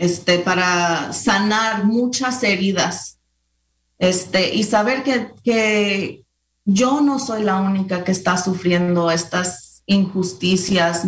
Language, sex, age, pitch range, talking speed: English, female, 30-49, 180-210 Hz, 110 wpm